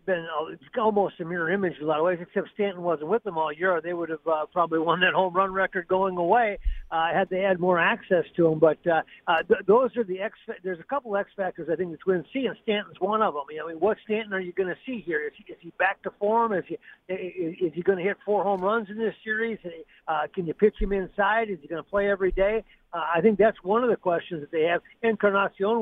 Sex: male